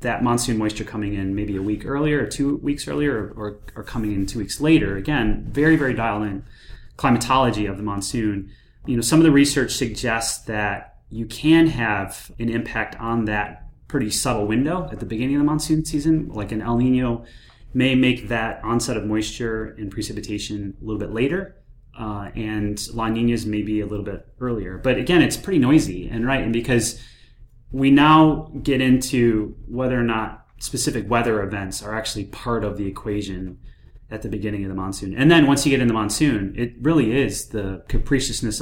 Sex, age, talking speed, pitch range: male, 30-49, 195 wpm, 105-130 Hz